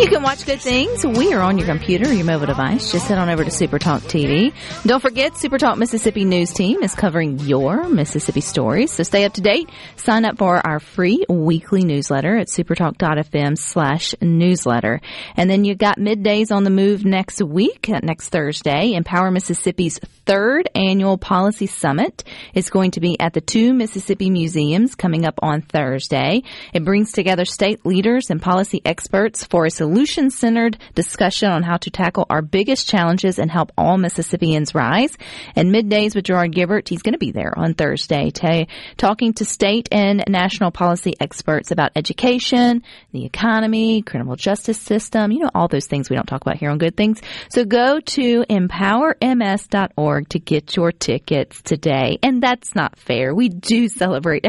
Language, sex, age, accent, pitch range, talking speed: English, female, 40-59, American, 165-225 Hz, 175 wpm